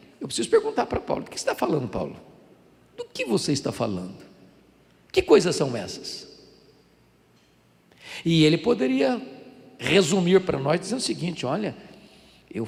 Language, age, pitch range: Portuguese, 50-69, 210-260 Hz